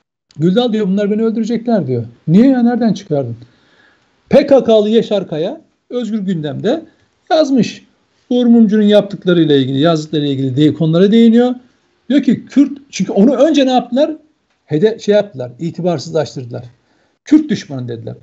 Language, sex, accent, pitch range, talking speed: Turkish, male, native, 175-245 Hz, 135 wpm